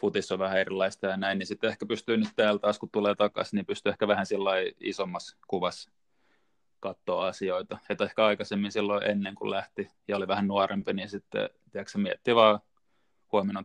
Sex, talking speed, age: male, 185 wpm, 20-39